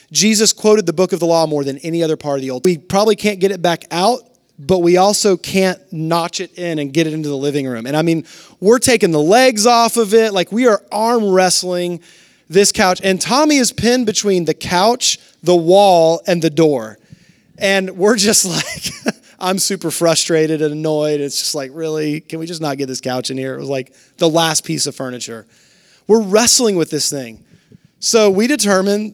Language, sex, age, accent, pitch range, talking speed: English, male, 30-49, American, 160-210 Hz, 210 wpm